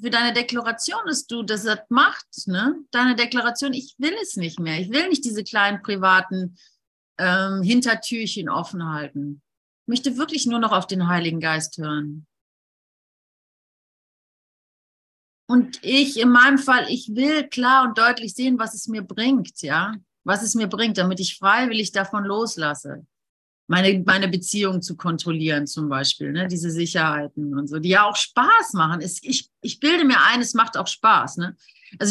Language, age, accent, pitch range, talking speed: German, 30-49, German, 185-255 Hz, 165 wpm